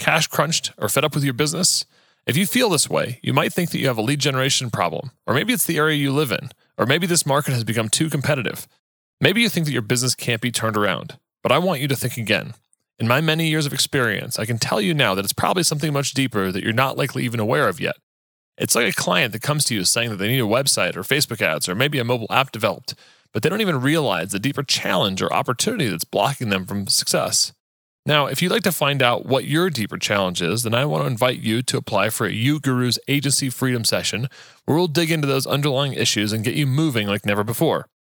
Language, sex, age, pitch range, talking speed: English, male, 30-49, 115-150 Hz, 250 wpm